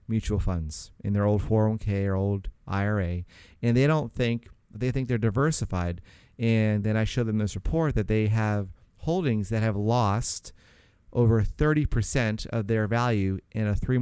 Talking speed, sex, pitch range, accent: 165 wpm, male, 100-120 Hz, American